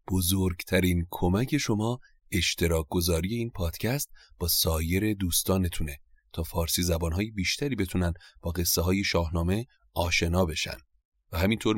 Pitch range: 85-100 Hz